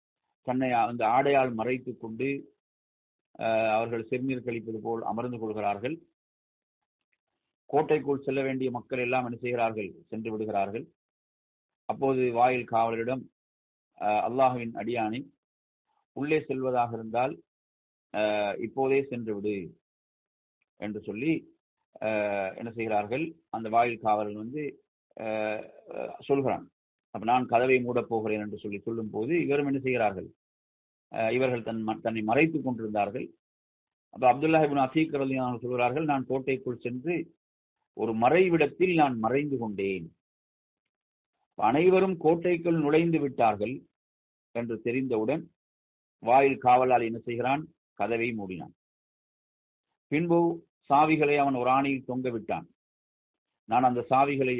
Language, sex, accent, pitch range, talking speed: English, male, Indian, 105-135 Hz, 85 wpm